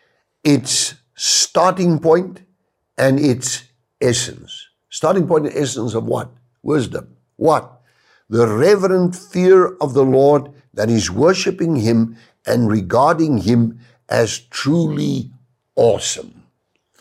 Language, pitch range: English, 100-140 Hz